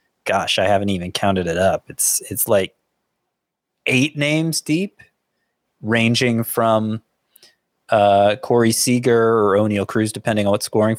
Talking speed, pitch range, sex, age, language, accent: 135 wpm, 100-135 Hz, male, 30-49, English, American